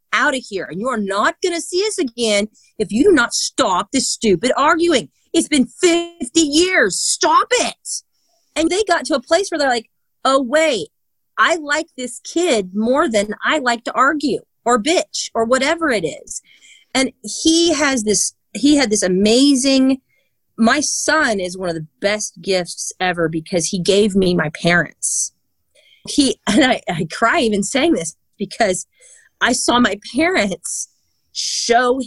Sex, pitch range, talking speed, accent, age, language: female, 205-290 Hz, 165 wpm, American, 30-49, English